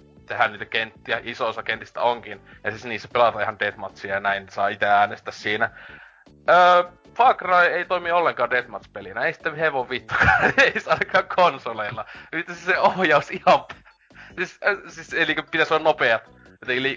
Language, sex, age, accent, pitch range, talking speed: Finnish, male, 20-39, native, 105-130 Hz, 160 wpm